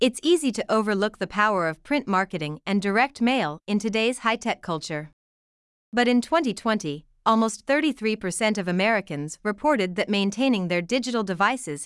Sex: female